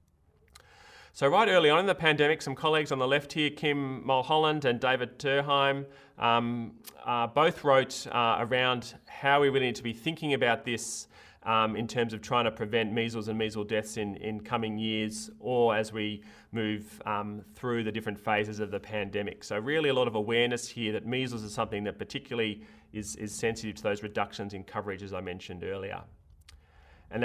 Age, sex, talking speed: 30-49, male, 190 wpm